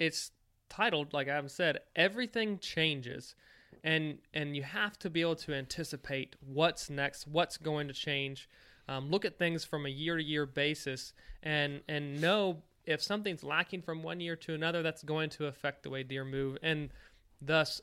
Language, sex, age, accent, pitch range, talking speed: English, male, 20-39, American, 140-165 Hz, 180 wpm